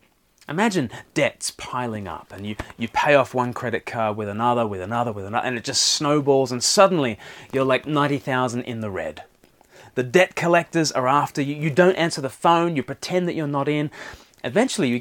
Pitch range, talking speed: 120-160 Hz, 195 wpm